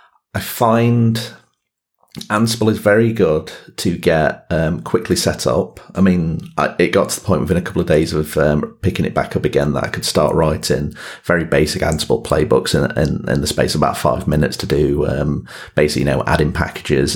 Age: 30-49